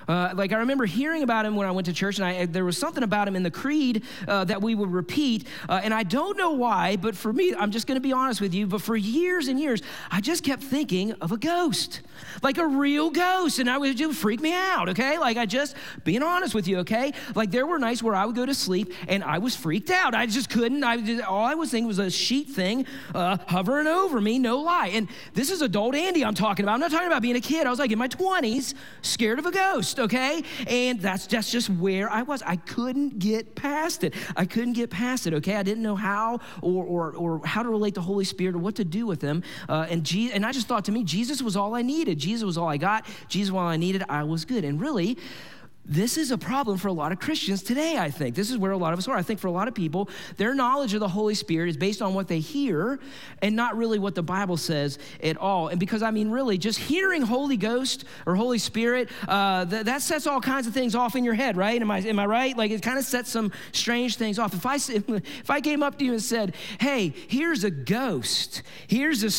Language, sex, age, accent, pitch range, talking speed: English, male, 40-59, American, 195-265 Hz, 260 wpm